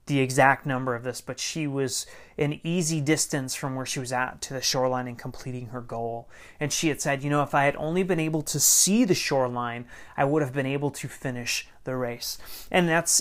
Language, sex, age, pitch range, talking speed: English, male, 30-49, 130-160 Hz, 225 wpm